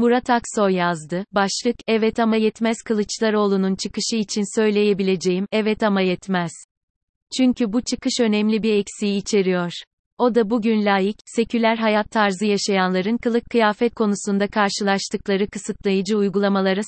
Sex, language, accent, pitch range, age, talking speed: female, Turkish, native, 195-225 Hz, 30-49, 125 wpm